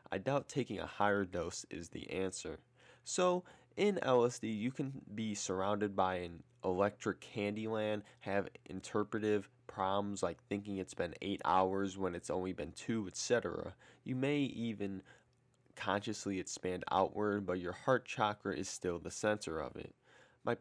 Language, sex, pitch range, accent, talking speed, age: English, male, 95-125 Hz, American, 155 wpm, 20-39